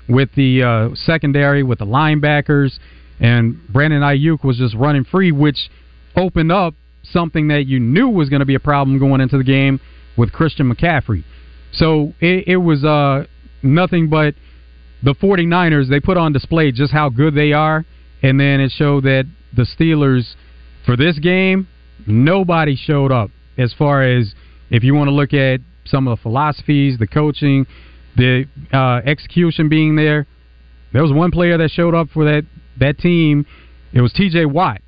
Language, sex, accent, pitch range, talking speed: English, male, American, 120-155 Hz, 170 wpm